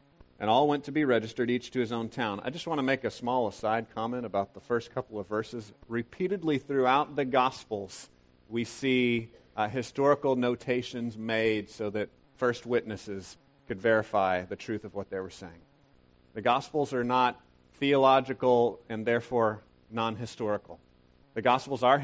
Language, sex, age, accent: English, male, 40-59, American